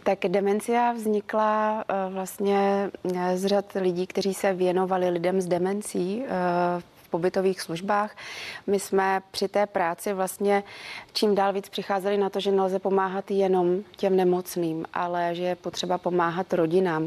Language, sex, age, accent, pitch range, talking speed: Czech, female, 30-49, native, 170-190 Hz, 135 wpm